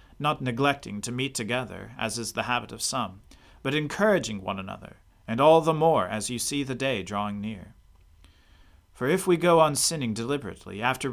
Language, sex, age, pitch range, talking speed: English, male, 40-59, 100-140 Hz, 185 wpm